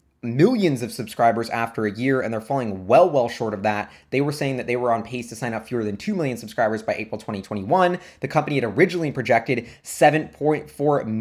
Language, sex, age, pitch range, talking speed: English, male, 20-39, 115-155 Hz, 210 wpm